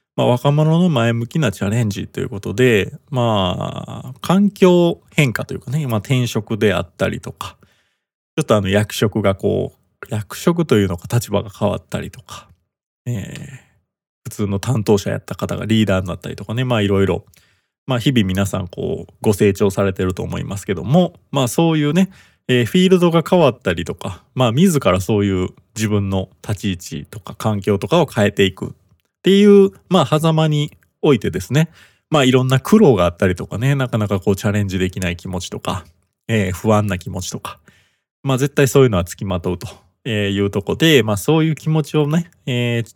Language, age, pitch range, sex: Japanese, 20-39, 95-135 Hz, male